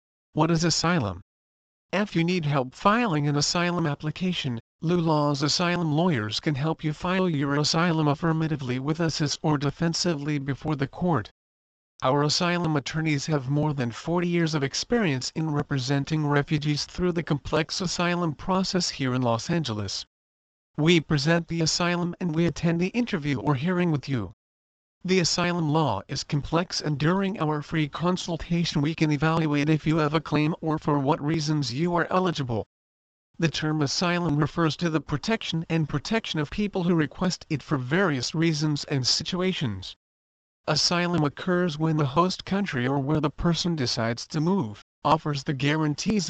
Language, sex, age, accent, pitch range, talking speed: English, male, 50-69, American, 140-170 Hz, 160 wpm